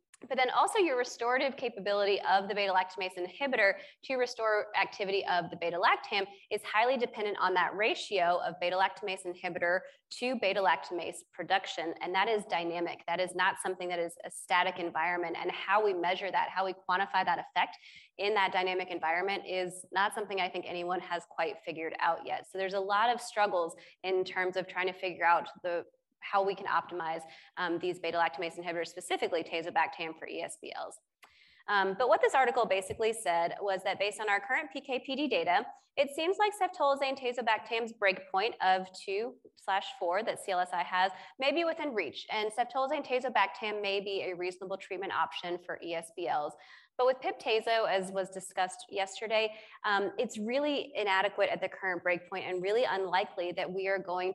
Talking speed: 170 wpm